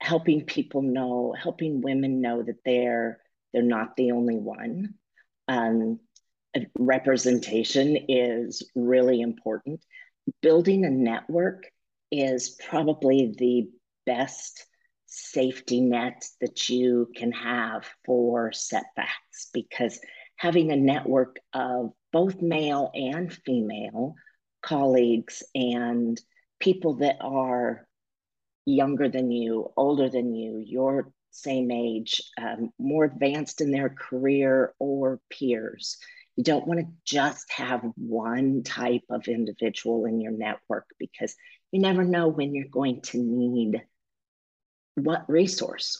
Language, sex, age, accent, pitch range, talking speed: English, female, 50-69, American, 120-150 Hz, 115 wpm